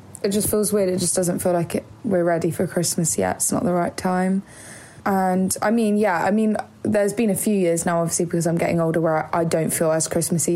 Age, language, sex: 20-39, English, female